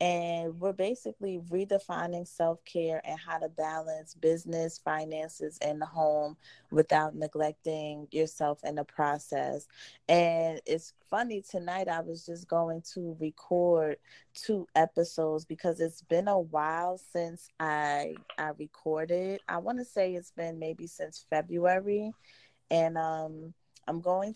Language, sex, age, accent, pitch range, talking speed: English, female, 20-39, American, 155-170 Hz, 135 wpm